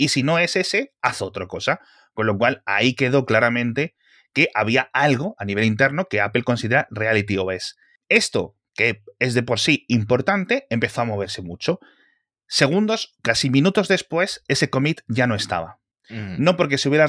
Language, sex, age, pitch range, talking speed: Spanish, male, 30-49, 110-145 Hz, 170 wpm